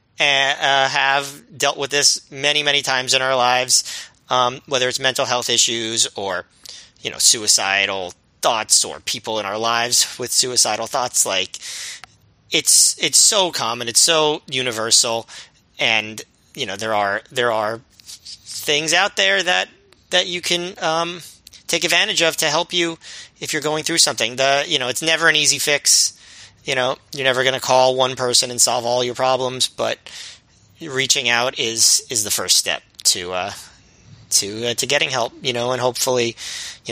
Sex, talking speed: male, 175 wpm